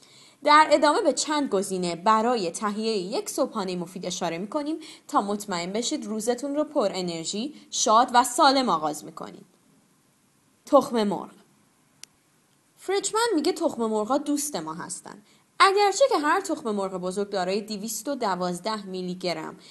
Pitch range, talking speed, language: 190-295 Hz, 130 wpm, Persian